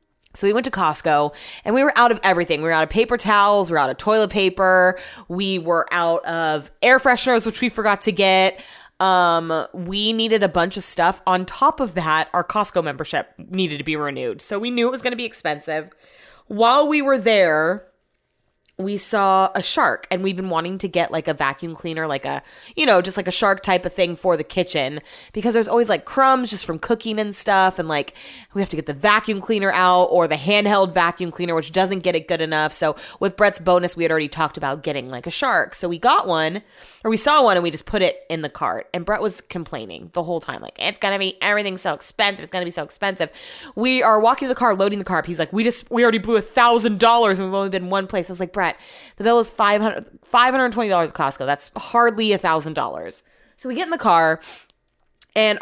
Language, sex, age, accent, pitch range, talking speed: English, female, 20-39, American, 165-215 Hz, 235 wpm